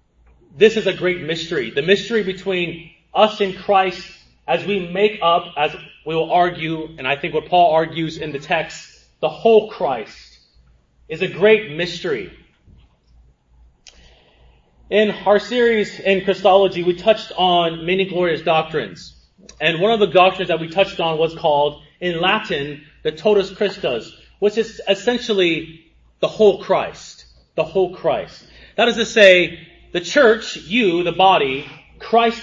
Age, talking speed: 30-49, 150 wpm